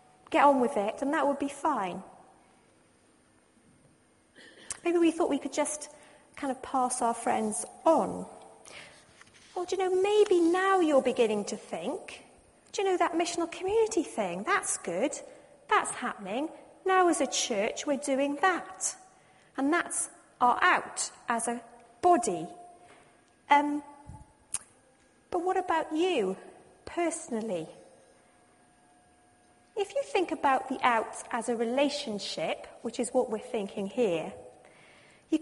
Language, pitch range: English, 250-340 Hz